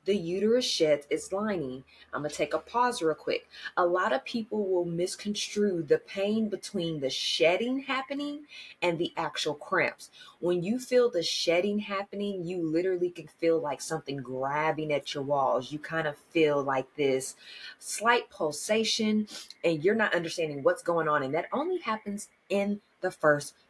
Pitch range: 155-210 Hz